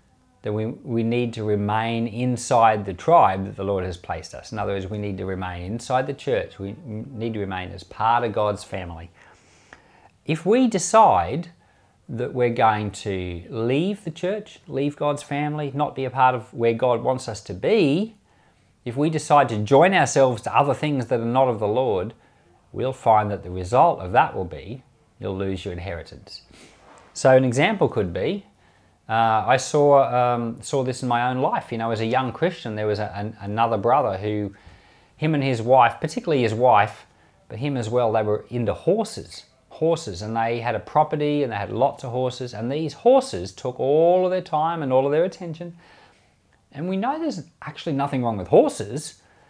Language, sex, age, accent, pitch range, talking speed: English, male, 40-59, Australian, 105-140 Hz, 195 wpm